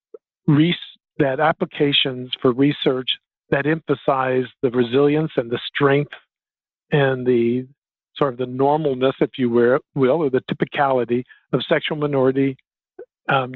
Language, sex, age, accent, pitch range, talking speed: English, male, 50-69, American, 130-160 Hz, 120 wpm